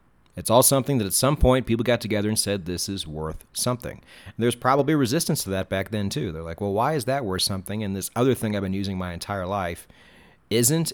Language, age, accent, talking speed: English, 40-59, American, 235 wpm